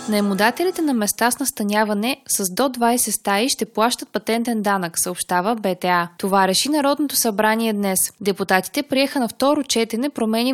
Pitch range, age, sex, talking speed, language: 195-250 Hz, 20-39, female, 150 wpm, Bulgarian